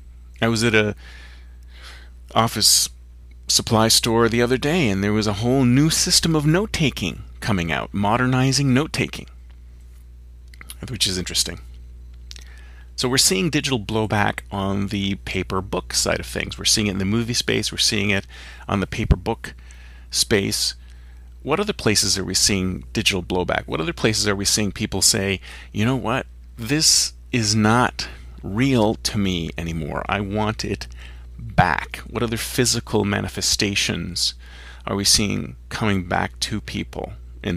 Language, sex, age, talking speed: English, male, 40-59, 150 wpm